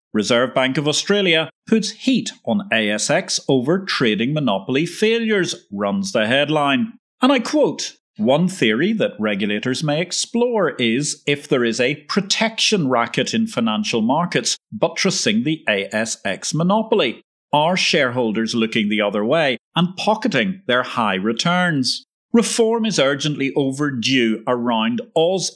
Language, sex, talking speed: English, male, 130 wpm